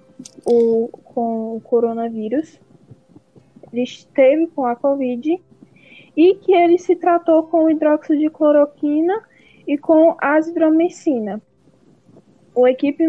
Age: 10-29